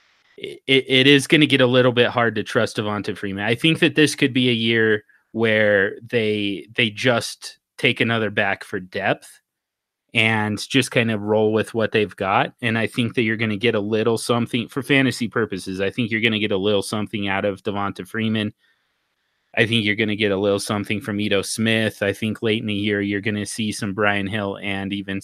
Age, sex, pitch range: 30-49, male, 100-120 Hz